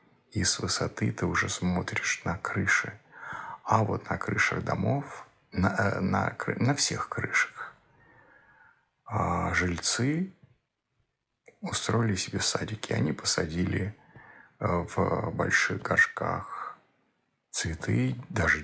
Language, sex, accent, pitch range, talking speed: Russian, male, native, 90-120 Hz, 90 wpm